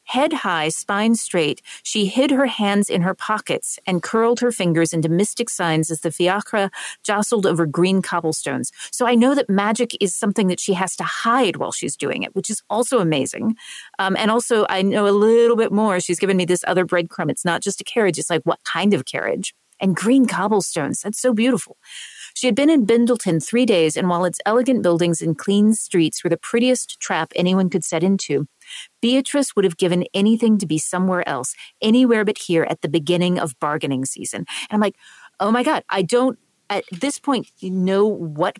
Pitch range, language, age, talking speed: 175-225 Hz, English, 40-59, 205 wpm